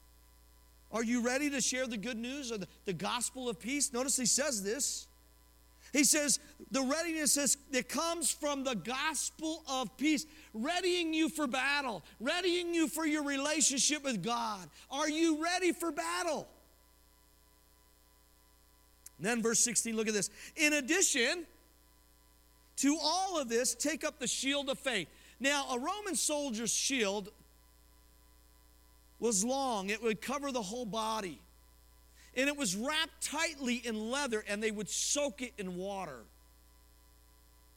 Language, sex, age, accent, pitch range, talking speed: English, male, 50-69, American, 175-275 Hz, 145 wpm